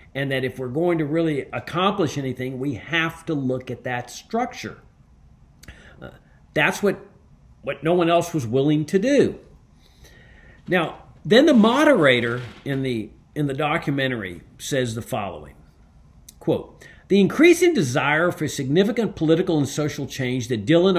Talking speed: 145 wpm